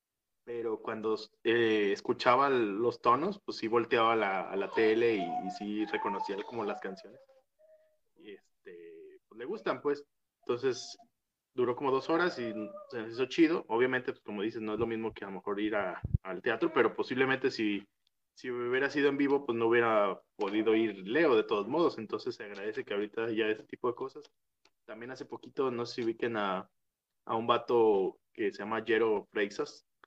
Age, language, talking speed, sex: 20-39, Spanish, 195 wpm, male